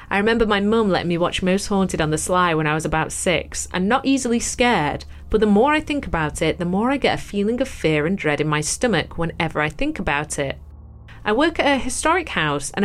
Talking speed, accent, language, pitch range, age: 250 wpm, British, English, 160-250 Hz, 30-49